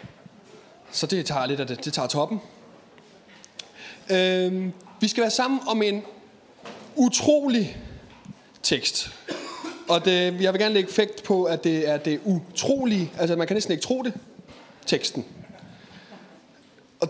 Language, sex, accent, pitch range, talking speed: Danish, male, native, 150-200 Hz, 130 wpm